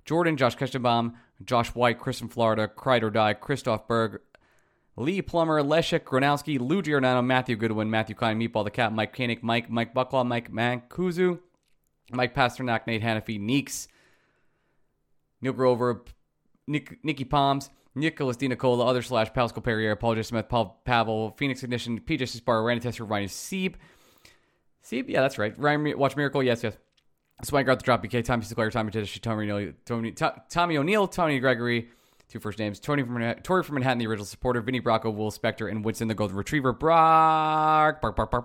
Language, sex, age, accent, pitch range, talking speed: English, male, 20-39, American, 110-145 Hz, 175 wpm